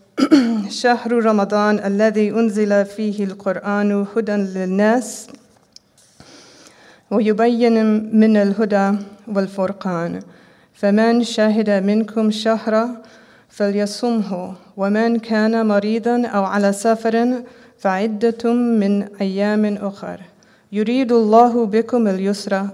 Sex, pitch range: female, 200-225 Hz